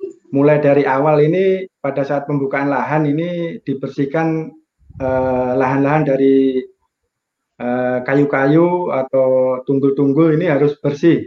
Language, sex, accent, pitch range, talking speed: Indonesian, male, native, 130-155 Hz, 105 wpm